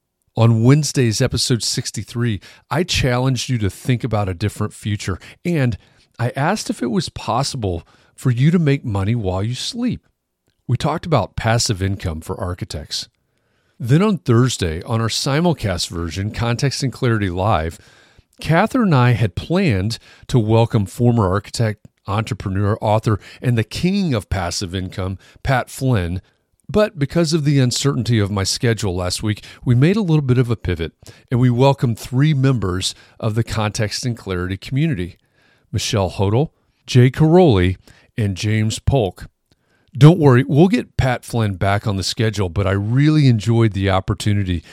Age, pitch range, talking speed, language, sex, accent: 40-59, 100-135 Hz, 155 wpm, English, male, American